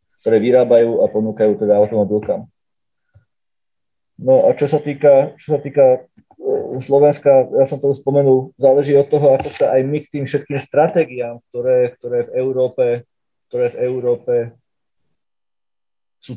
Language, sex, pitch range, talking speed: Slovak, male, 125-145 Hz, 140 wpm